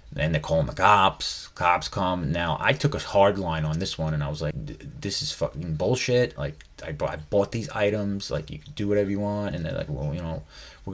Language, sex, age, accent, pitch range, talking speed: English, male, 30-49, American, 75-105 Hz, 235 wpm